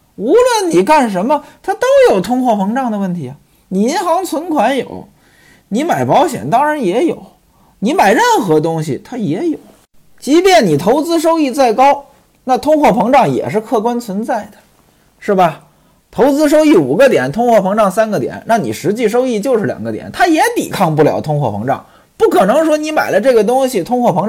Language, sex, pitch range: Chinese, male, 185-315 Hz